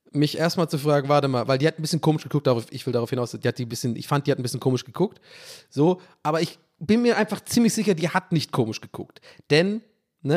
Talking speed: 260 wpm